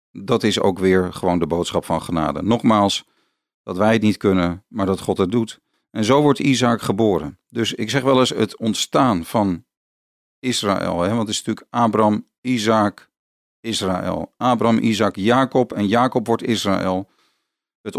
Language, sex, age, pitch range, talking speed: Dutch, male, 40-59, 95-120 Hz, 165 wpm